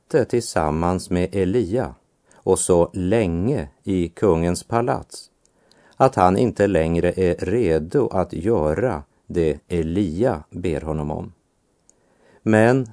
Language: Swedish